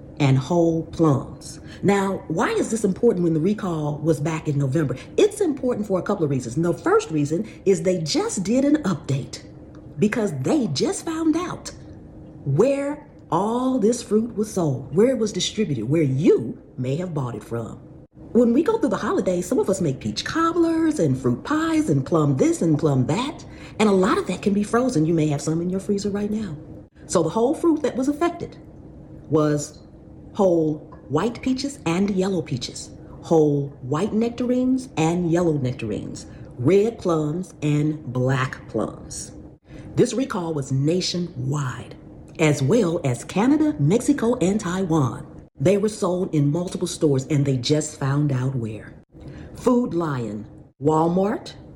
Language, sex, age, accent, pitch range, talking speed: English, female, 40-59, American, 150-215 Hz, 165 wpm